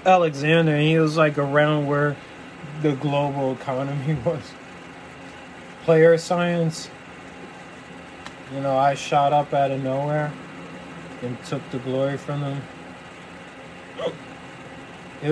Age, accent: 20-39, American